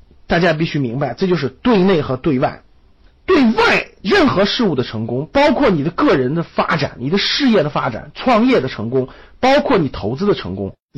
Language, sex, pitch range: Chinese, male, 145-240 Hz